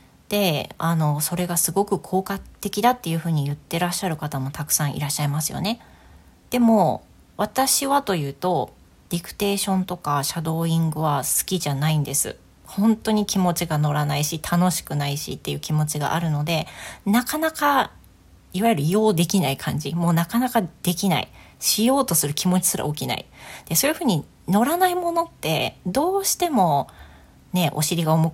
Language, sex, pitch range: Japanese, female, 145-195 Hz